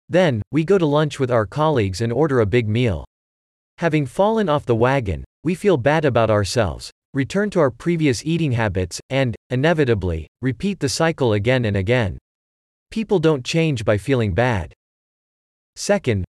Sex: male